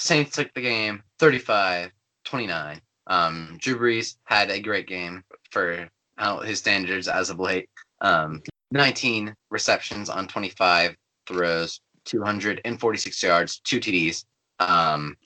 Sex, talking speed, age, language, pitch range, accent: male, 115 wpm, 20-39, English, 90-115 Hz, American